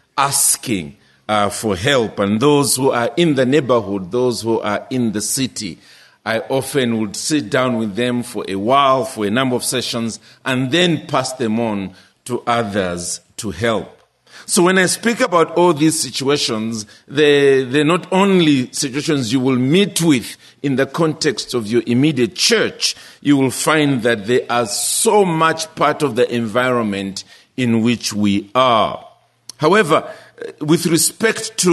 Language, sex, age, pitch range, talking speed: English, male, 50-69, 110-150 Hz, 160 wpm